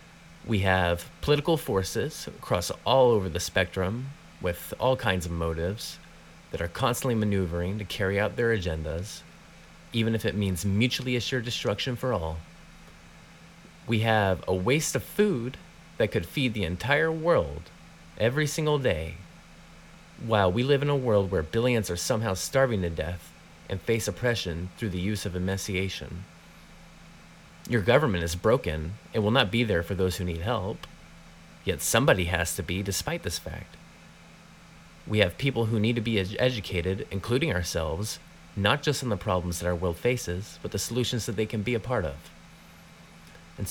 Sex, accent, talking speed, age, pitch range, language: male, American, 165 wpm, 30-49, 90-120 Hz, English